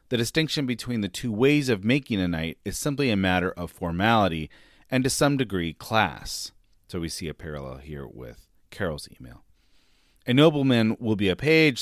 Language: English